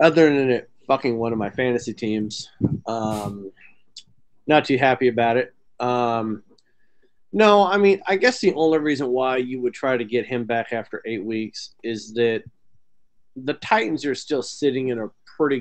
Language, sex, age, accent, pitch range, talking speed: English, male, 30-49, American, 110-135 Hz, 175 wpm